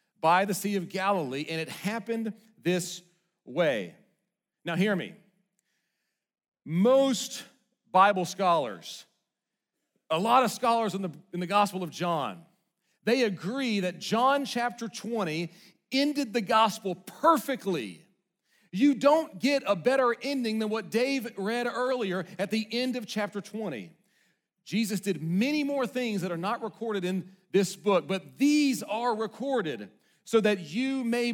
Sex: male